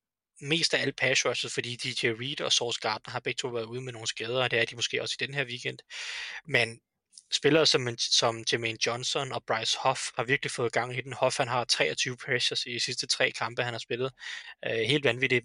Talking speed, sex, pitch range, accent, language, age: 230 wpm, male, 120-155 Hz, native, Danish, 20-39